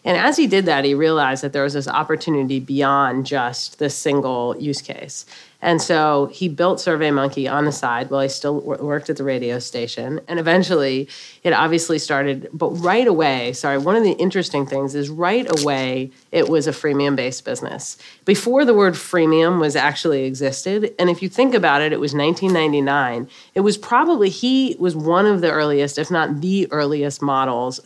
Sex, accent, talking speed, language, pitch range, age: female, American, 185 wpm, English, 140-175 Hz, 30-49